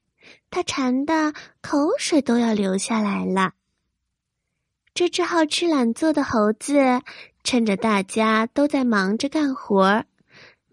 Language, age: Chinese, 20-39